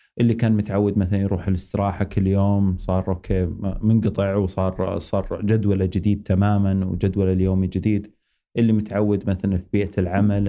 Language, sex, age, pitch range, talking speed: Arabic, male, 30-49, 95-115 Hz, 145 wpm